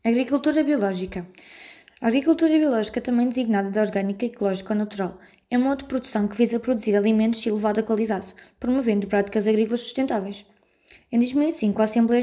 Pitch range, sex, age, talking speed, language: 205-245 Hz, female, 20-39, 155 wpm, Portuguese